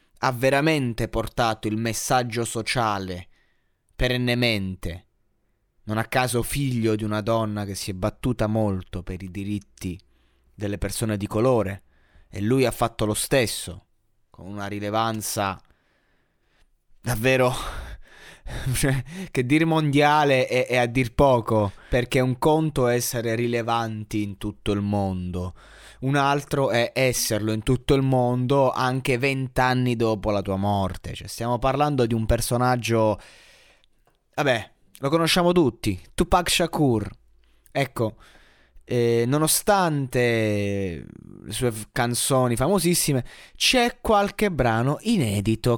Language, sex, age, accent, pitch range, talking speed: Italian, male, 20-39, native, 105-130 Hz, 120 wpm